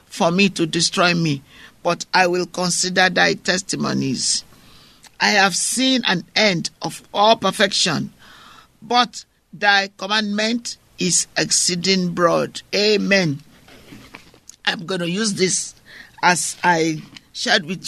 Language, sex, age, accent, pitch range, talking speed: English, male, 50-69, Nigerian, 170-205 Hz, 115 wpm